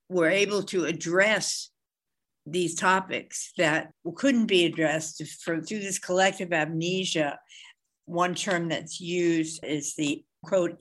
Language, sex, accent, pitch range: English, female, American, 160-190 Hz